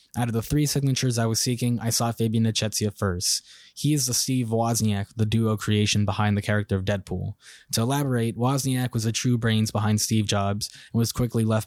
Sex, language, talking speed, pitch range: male, English, 205 wpm, 105-115 Hz